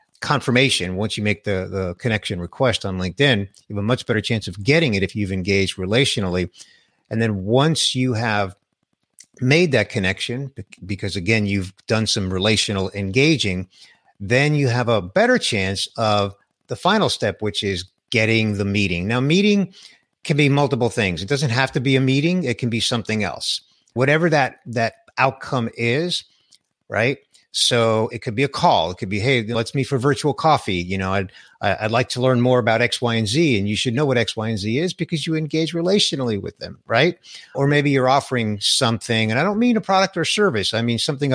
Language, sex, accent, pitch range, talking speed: English, male, American, 100-135 Hz, 200 wpm